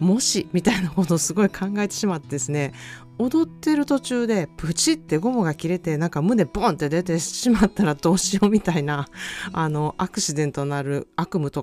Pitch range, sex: 140-195 Hz, female